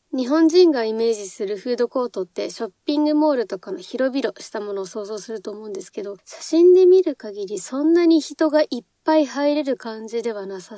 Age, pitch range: 20-39, 210-305 Hz